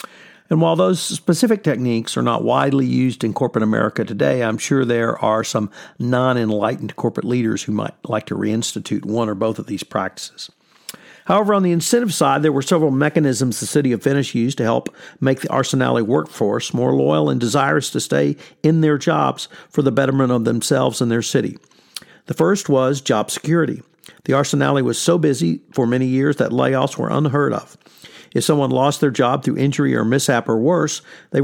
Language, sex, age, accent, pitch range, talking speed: English, male, 50-69, American, 120-155 Hz, 190 wpm